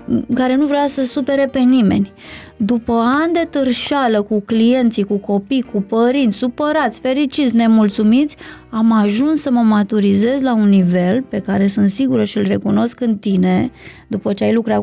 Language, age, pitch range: Romanian, 20-39, 210-260 Hz